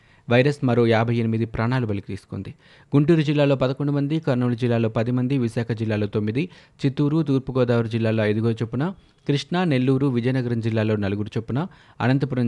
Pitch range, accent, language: 110-135 Hz, native, Telugu